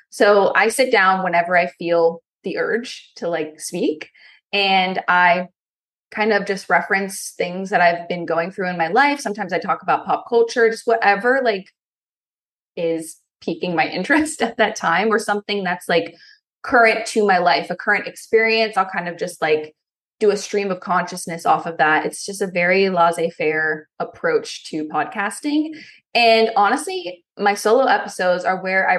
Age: 20-39